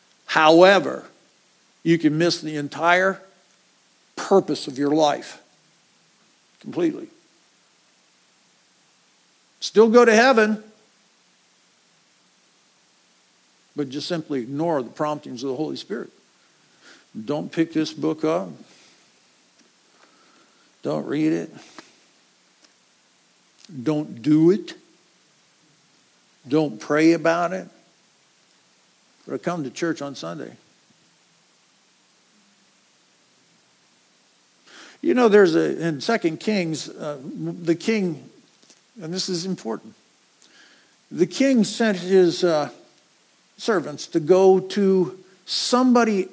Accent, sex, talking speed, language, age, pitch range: American, male, 90 wpm, English, 60-79, 155-195 Hz